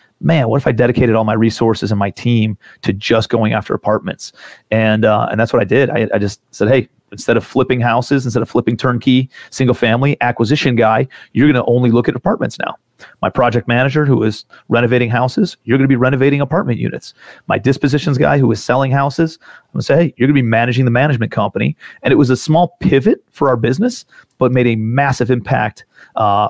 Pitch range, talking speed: 115-130 Hz, 210 wpm